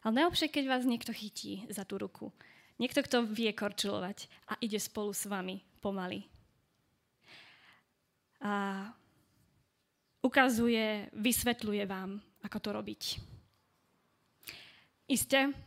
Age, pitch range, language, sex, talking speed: 20-39, 210-245 Hz, Slovak, female, 105 wpm